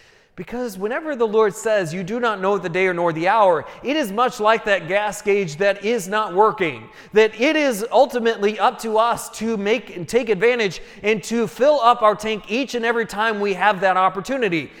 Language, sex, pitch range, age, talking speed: English, male, 180-230 Hz, 30-49, 210 wpm